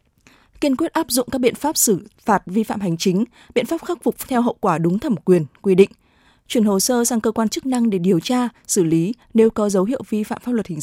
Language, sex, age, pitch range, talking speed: Vietnamese, female, 20-39, 190-235 Hz, 260 wpm